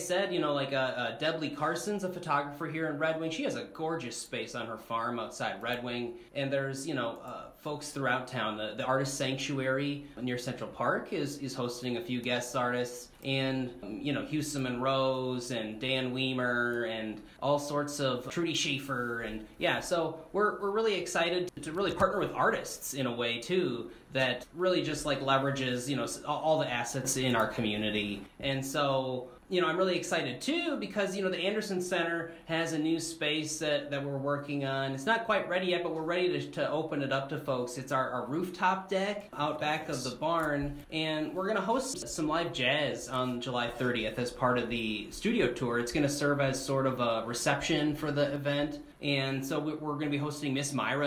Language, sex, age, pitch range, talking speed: English, male, 20-39, 125-155 Hz, 210 wpm